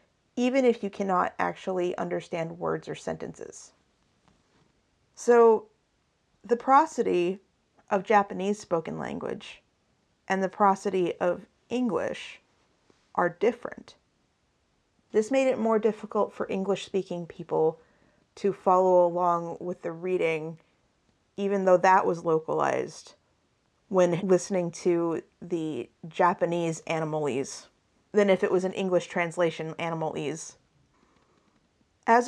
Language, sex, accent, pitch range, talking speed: English, female, American, 170-210 Hz, 110 wpm